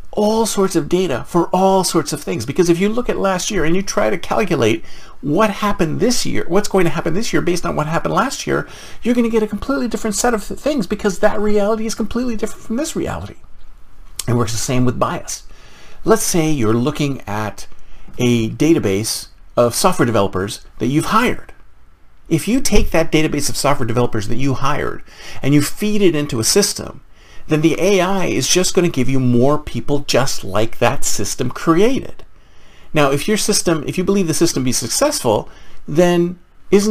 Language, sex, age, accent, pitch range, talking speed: English, male, 50-69, American, 140-210 Hz, 195 wpm